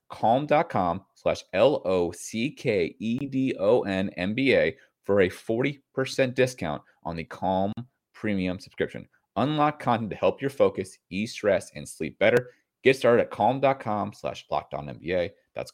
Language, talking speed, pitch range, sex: English, 165 wpm, 105-135 Hz, male